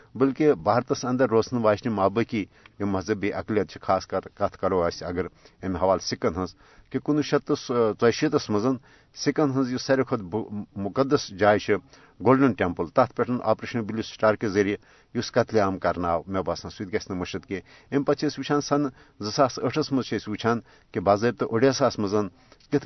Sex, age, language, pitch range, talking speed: male, 60-79, Urdu, 100-135 Hz, 140 wpm